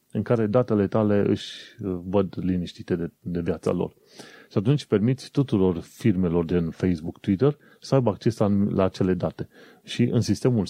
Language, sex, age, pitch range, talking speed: Romanian, male, 30-49, 90-125 Hz, 155 wpm